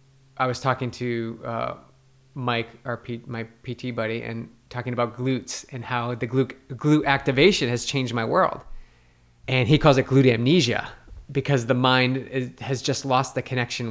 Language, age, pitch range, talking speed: English, 20-39, 115-135 Hz, 170 wpm